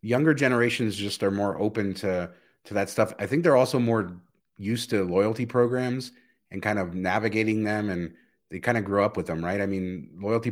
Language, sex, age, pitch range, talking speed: English, male, 30-49, 95-115 Hz, 205 wpm